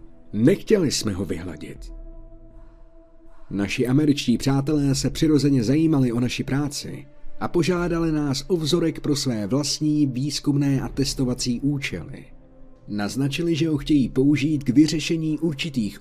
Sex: male